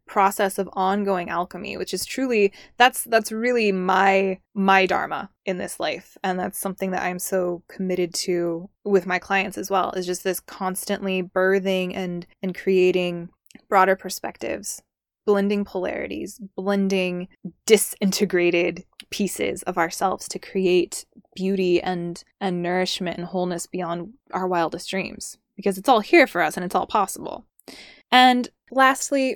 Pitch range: 180-205 Hz